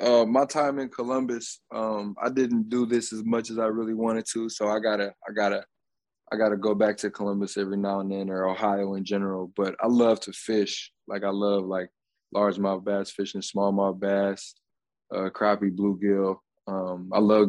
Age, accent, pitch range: 20-39, American, 100-110 Hz